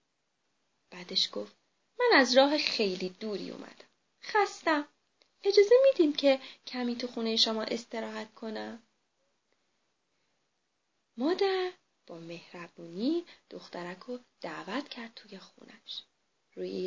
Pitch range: 220-370 Hz